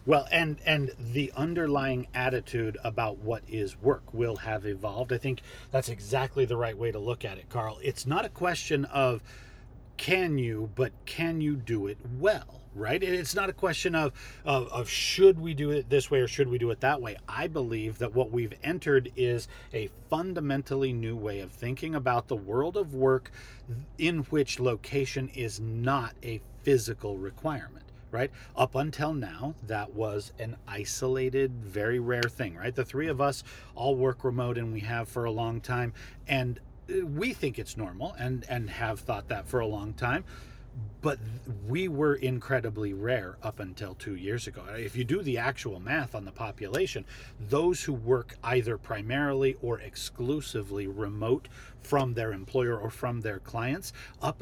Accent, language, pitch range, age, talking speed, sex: American, English, 110-135 Hz, 40-59, 180 wpm, male